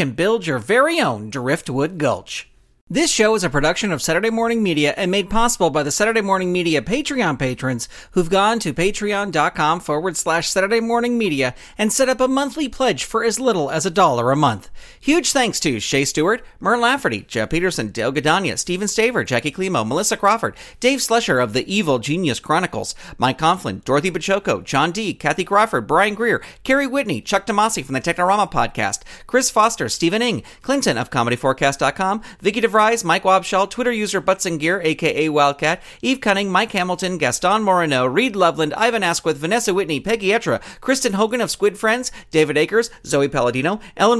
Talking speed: 180 wpm